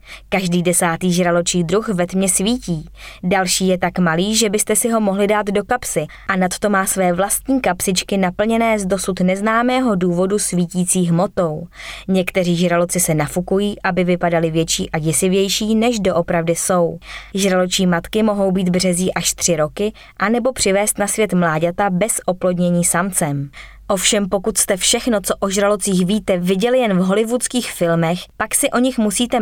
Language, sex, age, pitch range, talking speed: Czech, female, 20-39, 180-210 Hz, 160 wpm